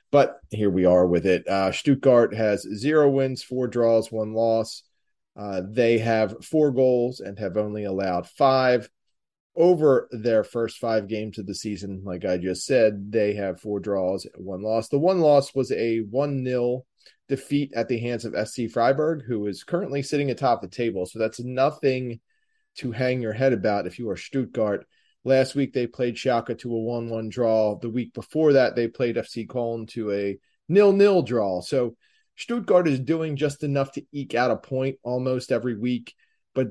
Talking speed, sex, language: 180 wpm, male, English